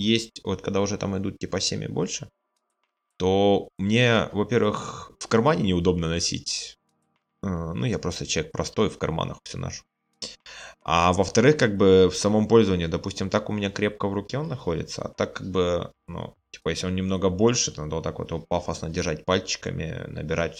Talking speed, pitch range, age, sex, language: 180 wpm, 85-105 Hz, 20-39, male, Russian